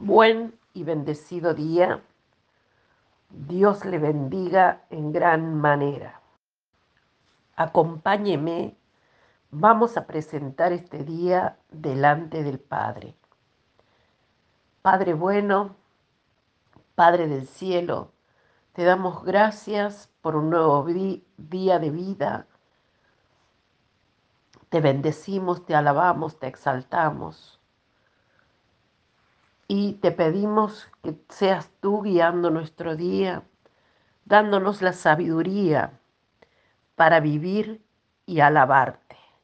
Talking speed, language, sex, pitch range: 85 wpm, Spanish, female, 155-195 Hz